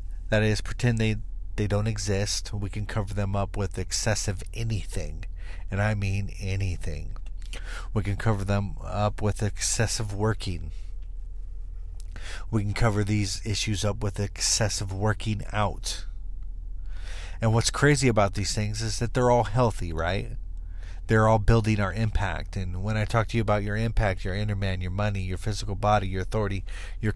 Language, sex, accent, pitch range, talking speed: English, male, American, 80-105 Hz, 165 wpm